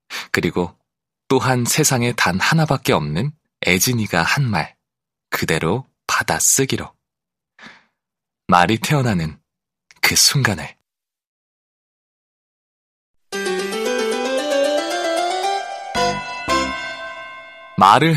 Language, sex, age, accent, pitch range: Korean, male, 30-49, native, 95-145 Hz